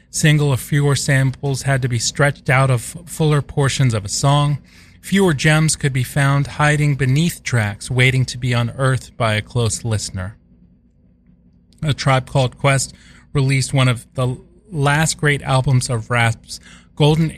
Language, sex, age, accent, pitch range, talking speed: English, male, 30-49, American, 105-140 Hz, 155 wpm